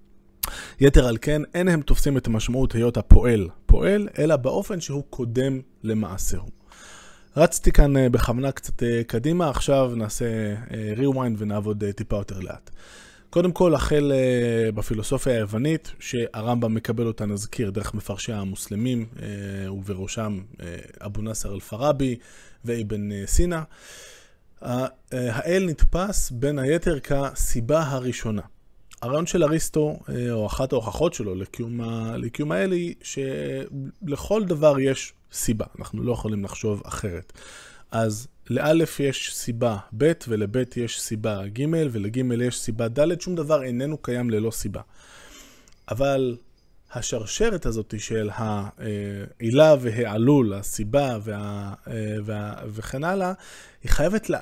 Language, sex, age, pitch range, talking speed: Hebrew, male, 20-39, 105-140 Hz, 110 wpm